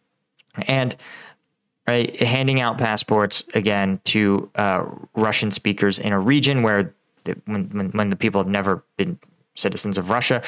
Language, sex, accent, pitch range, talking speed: English, male, American, 110-140 Hz, 130 wpm